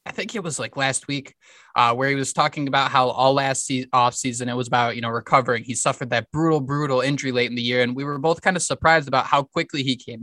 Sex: male